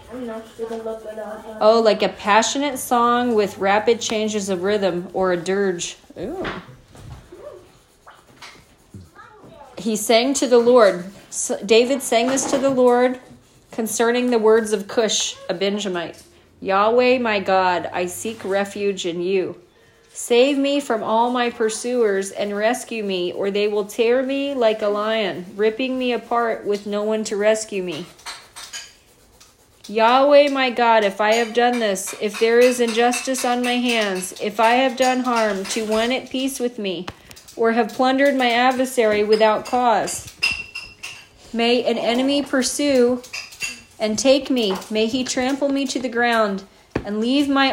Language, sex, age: English, female, 30-49